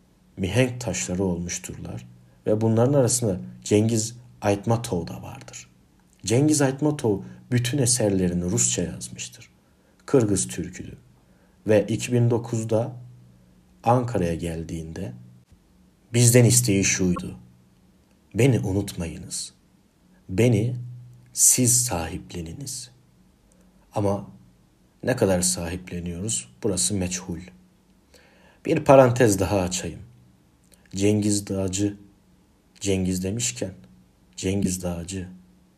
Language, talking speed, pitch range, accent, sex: Turkish, 75 wpm, 85-115 Hz, native, male